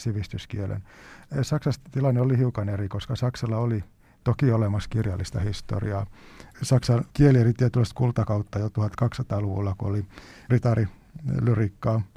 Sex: male